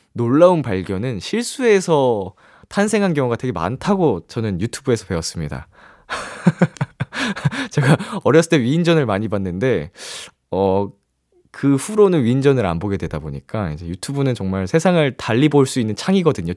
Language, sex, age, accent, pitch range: Korean, male, 20-39, native, 110-175 Hz